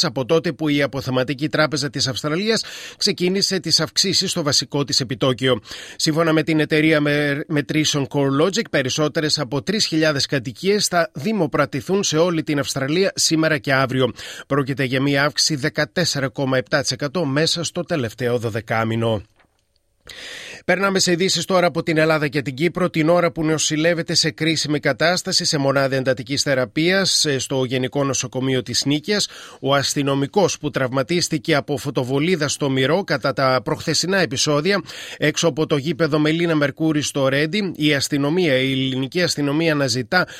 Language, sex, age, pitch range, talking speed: Greek, male, 30-49, 140-170 Hz, 140 wpm